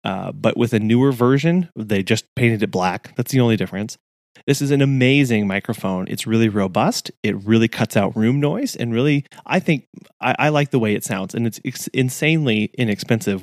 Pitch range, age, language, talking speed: 110-130 Hz, 30-49, English, 200 wpm